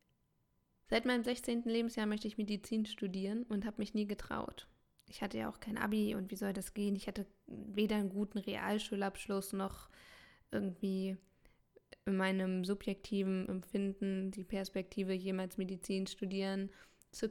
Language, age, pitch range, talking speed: German, 10-29, 195-215 Hz, 145 wpm